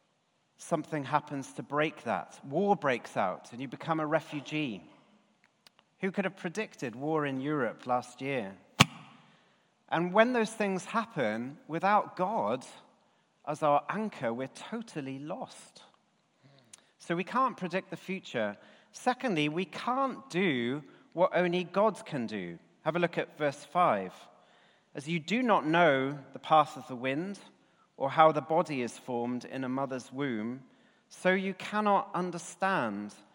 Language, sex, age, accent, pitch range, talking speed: English, male, 40-59, British, 140-190 Hz, 145 wpm